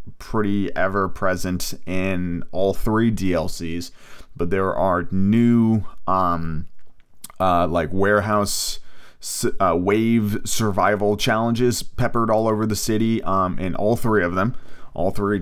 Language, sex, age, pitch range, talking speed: English, male, 30-49, 95-110 Hz, 125 wpm